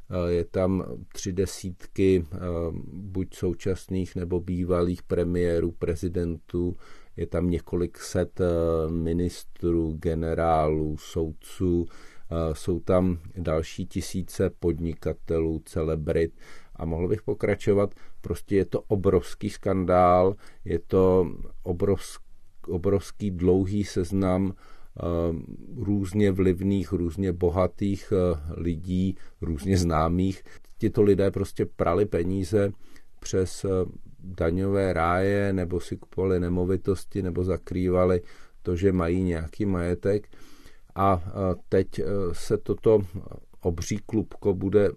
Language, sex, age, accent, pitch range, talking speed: Czech, male, 40-59, native, 85-95 Hz, 95 wpm